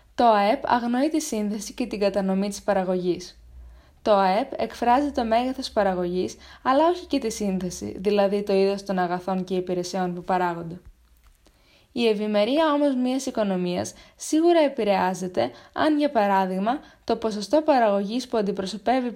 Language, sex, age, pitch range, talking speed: Greek, female, 20-39, 190-265 Hz, 140 wpm